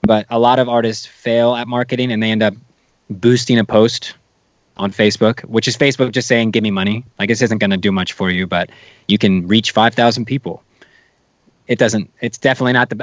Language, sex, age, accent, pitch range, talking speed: English, male, 20-39, American, 100-120 Hz, 210 wpm